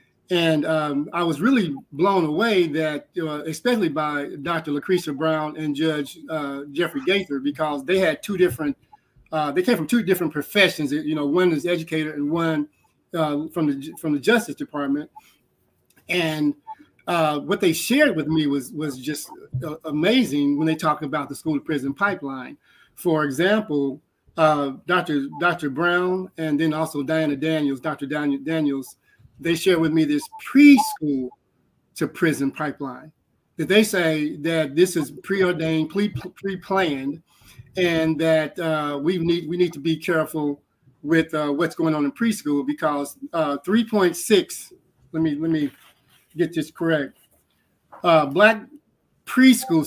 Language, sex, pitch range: English, male, 145-180 Hz